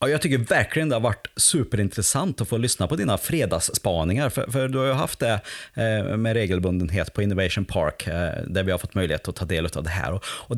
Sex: male